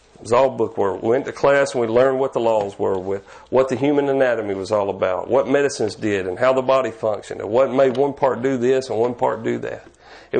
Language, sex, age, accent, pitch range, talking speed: English, male, 40-59, American, 115-150 Hz, 260 wpm